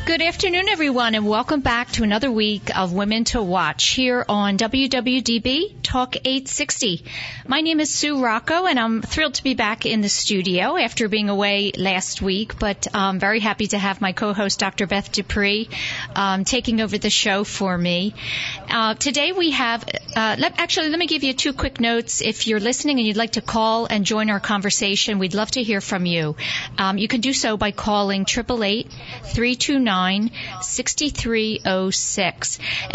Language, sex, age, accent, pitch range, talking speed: English, female, 50-69, American, 195-240 Hz, 175 wpm